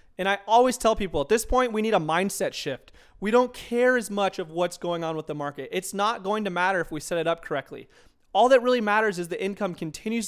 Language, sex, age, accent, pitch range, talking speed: English, male, 30-49, American, 155-200 Hz, 255 wpm